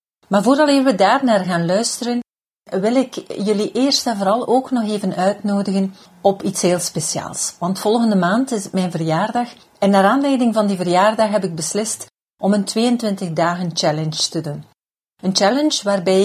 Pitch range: 180-225 Hz